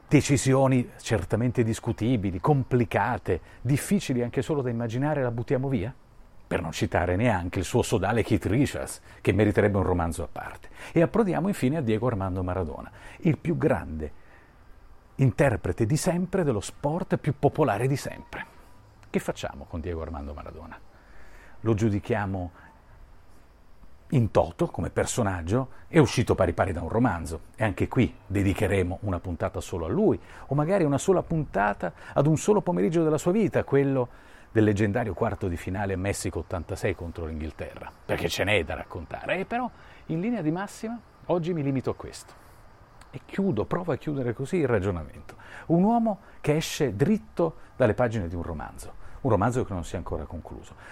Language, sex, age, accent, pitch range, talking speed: Italian, male, 40-59, native, 95-150 Hz, 165 wpm